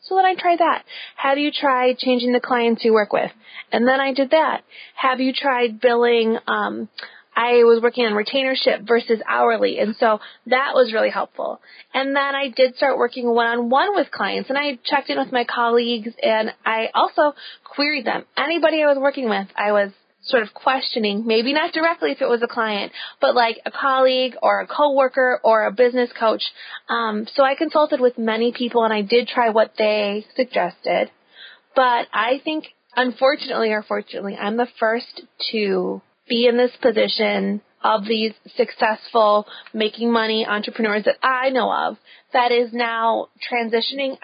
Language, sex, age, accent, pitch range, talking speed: English, female, 20-39, American, 220-265 Hz, 175 wpm